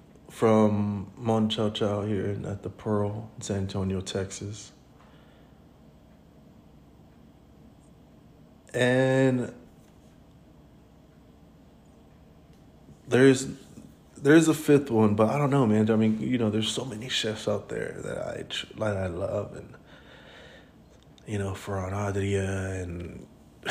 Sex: male